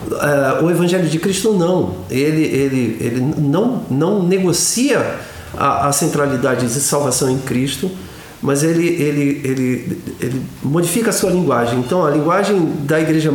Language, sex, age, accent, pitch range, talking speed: Portuguese, male, 50-69, Brazilian, 140-190 Hz, 145 wpm